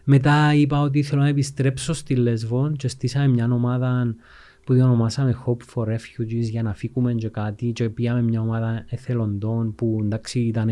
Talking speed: 170 wpm